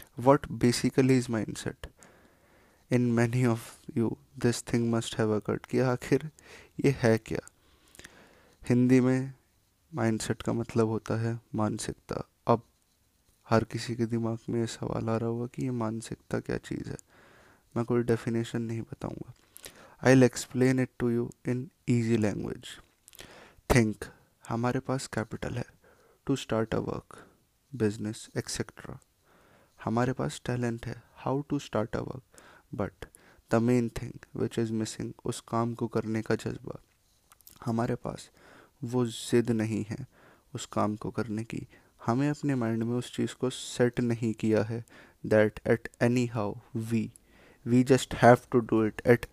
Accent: native